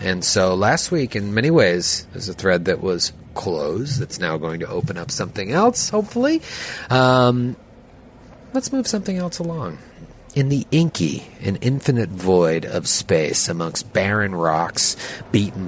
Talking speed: 155 wpm